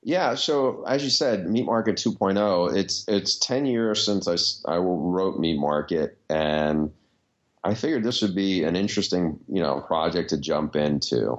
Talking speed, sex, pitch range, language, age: 170 wpm, male, 75-100 Hz, English, 30-49